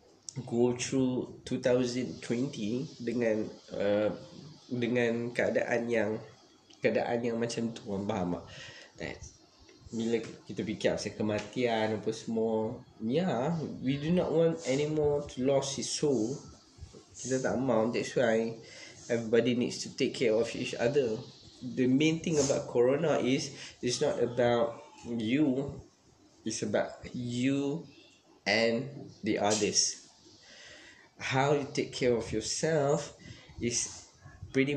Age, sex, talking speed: 20-39, male, 115 wpm